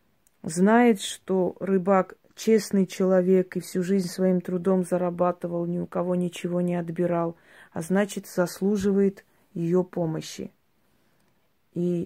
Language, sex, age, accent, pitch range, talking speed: Russian, female, 30-49, native, 175-200 Hz, 115 wpm